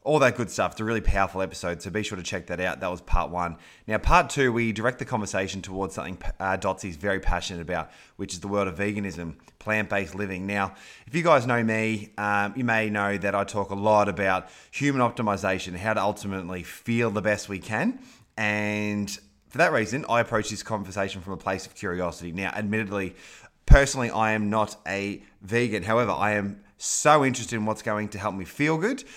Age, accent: 20-39, Australian